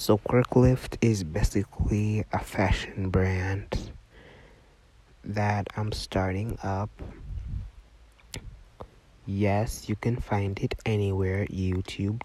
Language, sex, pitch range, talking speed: English, male, 90-105 Hz, 90 wpm